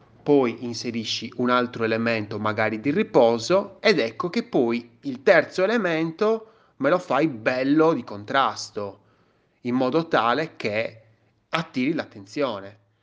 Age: 30-49